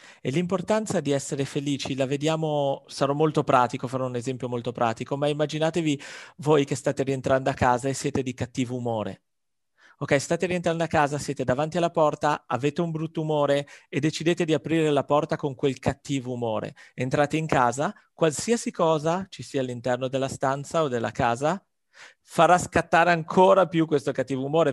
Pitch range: 130-160 Hz